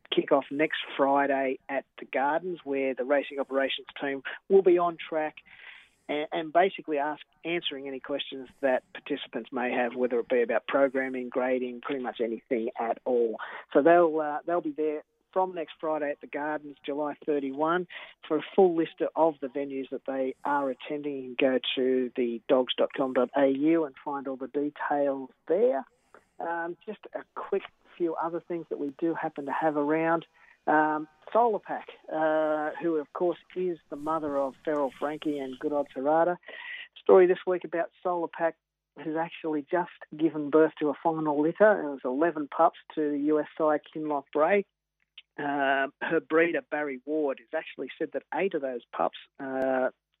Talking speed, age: 170 wpm, 40-59